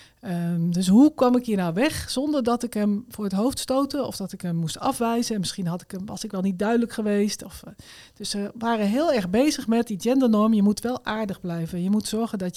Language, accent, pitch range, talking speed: Dutch, Dutch, 185-235 Hz, 250 wpm